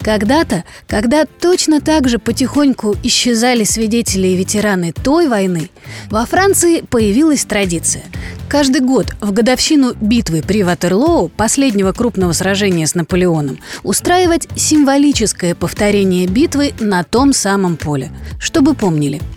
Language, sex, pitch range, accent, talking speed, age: Russian, female, 190-285 Hz, native, 120 wpm, 30-49